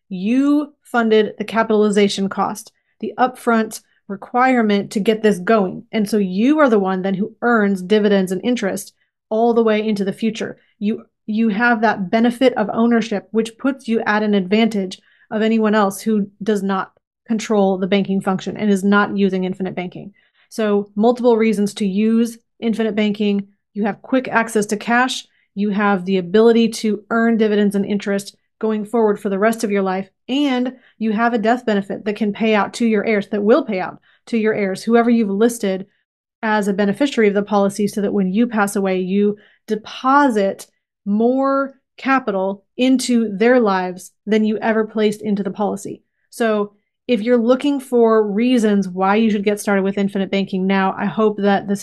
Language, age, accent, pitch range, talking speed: English, 30-49, American, 200-230 Hz, 180 wpm